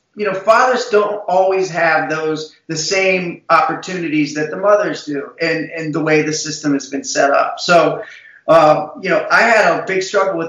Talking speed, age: 195 wpm, 30-49